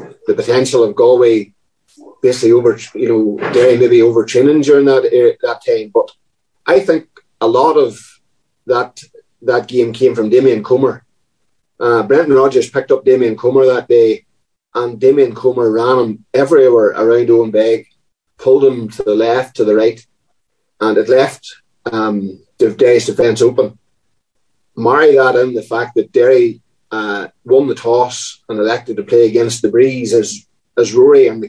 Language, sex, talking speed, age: English, male, 160 wpm, 30-49